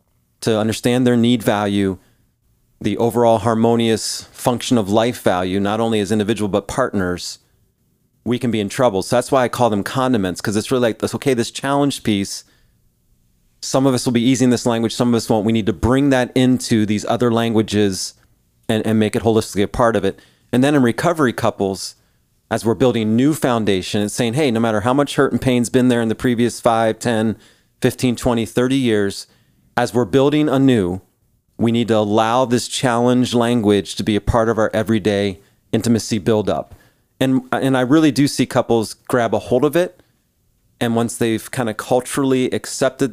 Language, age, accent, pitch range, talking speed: English, 30-49, American, 110-130 Hz, 190 wpm